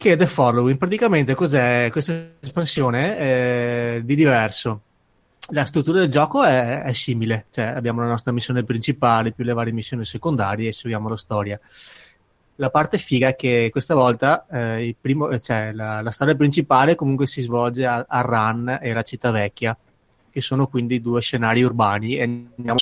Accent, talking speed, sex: native, 175 wpm, male